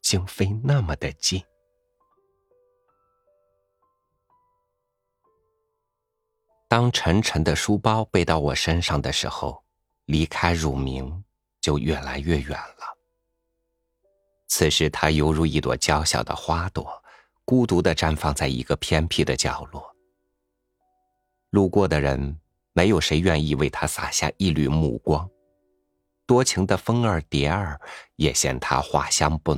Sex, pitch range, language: male, 75-105 Hz, Chinese